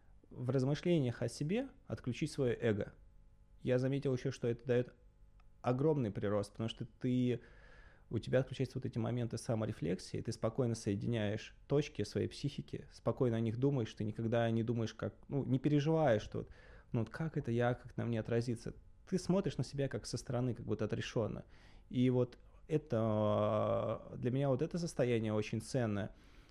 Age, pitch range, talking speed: 20-39, 110-135 Hz, 165 wpm